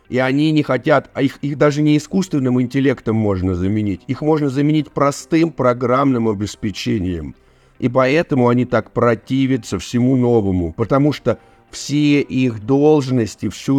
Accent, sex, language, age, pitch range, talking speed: native, male, Russian, 50-69, 115-145 Hz, 140 wpm